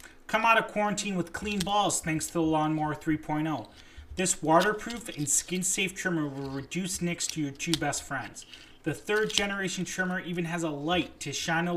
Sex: male